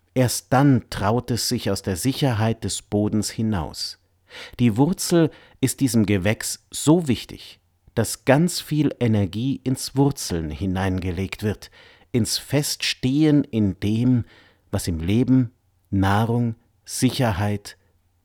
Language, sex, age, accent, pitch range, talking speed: German, male, 50-69, German, 95-125 Hz, 115 wpm